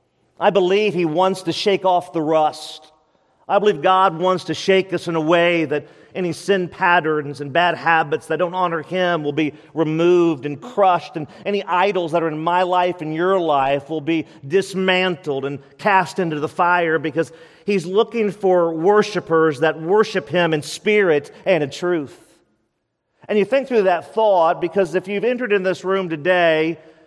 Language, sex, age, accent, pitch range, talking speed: English, male, 40-59, American, 165-205 Hz, 180 wpm